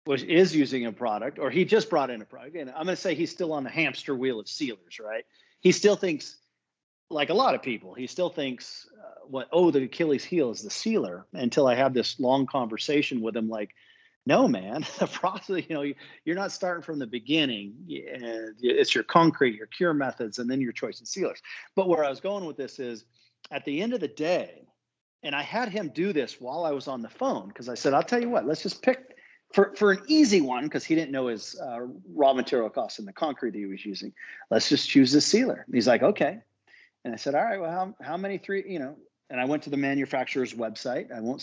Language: English